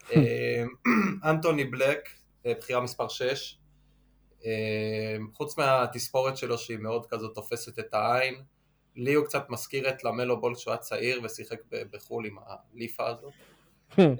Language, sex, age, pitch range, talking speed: Hebrew, male, 20-39, 115-145 Hz, 125 wpm